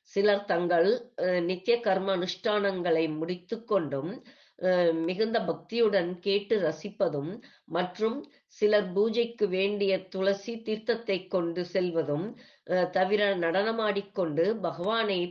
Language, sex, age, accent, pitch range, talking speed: Tamil, female, 20-39, native, 170-210 Hz, 90 wpm